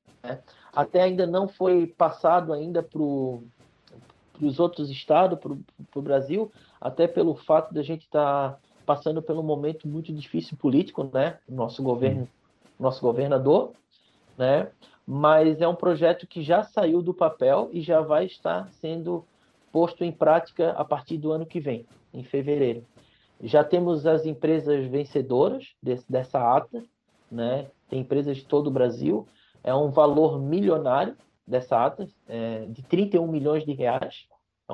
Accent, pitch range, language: Brazilian, 130-165 Hz, Portuguese